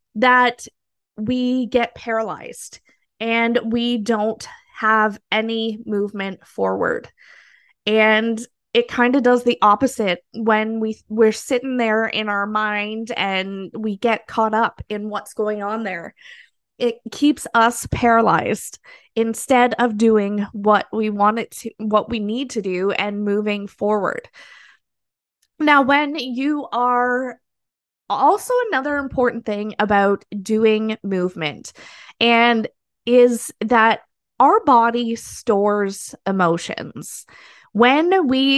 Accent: American